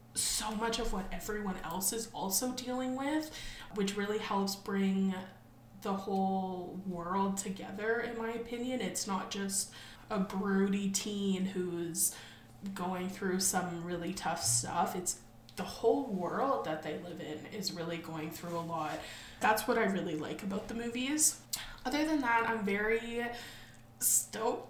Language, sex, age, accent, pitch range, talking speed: English, female, 20-39, American, 185-250 Hz, 150 wpm